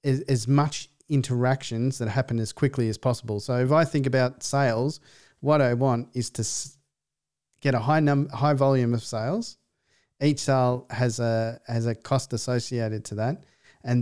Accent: Australian